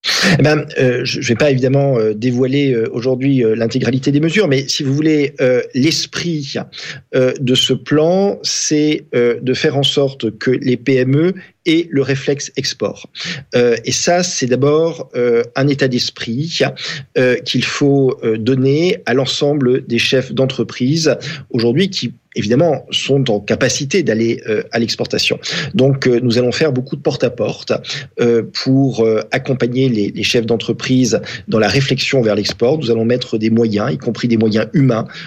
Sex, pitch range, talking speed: male, 120-145 Hz, 155 wpm